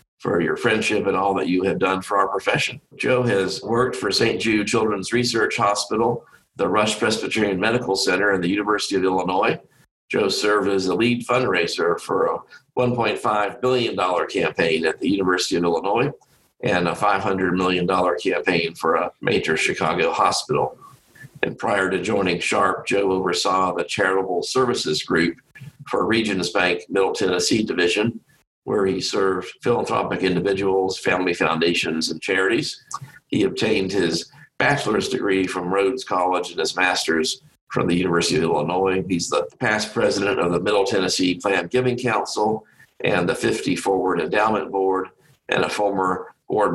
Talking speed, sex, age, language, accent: 155 wpm, male, 50-69, English, American